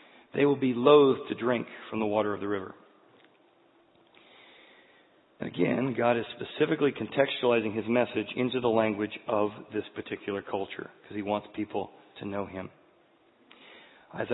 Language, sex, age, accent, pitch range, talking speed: English, male, 40-59, American, 105-130 Hz, 140 wpm